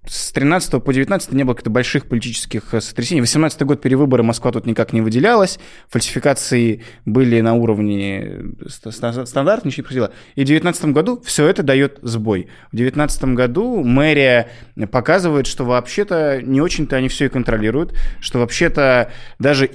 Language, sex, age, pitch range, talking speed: Russian, male, 20-39, 115-150 Hz, 155 wpm